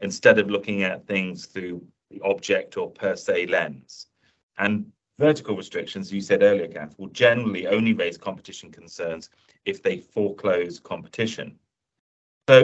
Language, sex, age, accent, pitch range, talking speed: English, male, 40-59, British, 95-145 Hz, 140 wpm